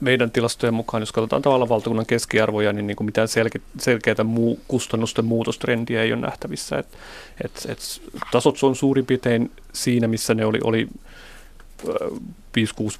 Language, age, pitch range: Finnish, 30-49, 105-120 Hz